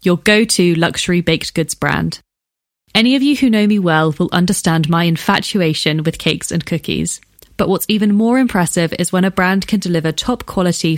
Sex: female